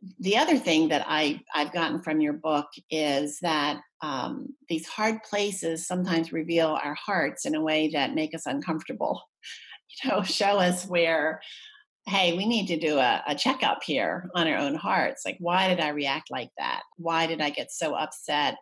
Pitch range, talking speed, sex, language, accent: 155-200 Hz, 185 wpm, female, English, American